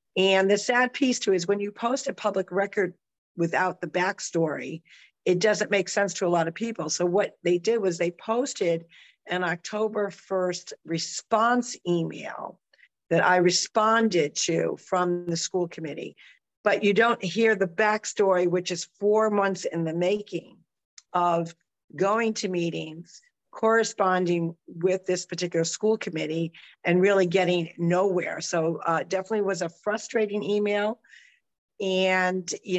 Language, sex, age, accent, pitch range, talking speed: English, female, 50-69, American, 175-210 Hz, 145 wpm